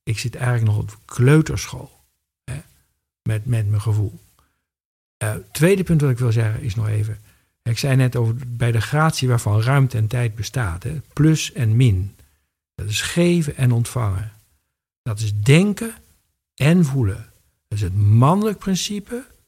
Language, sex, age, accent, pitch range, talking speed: Dutch, male, 60-79, Dutch, 110-155 Hz, 155 wpm